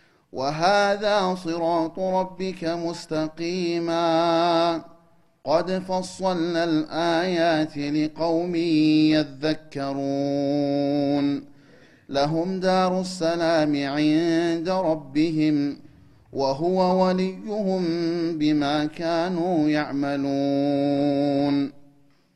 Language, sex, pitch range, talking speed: Amharic, male, 145-170 Hz, 50 wpm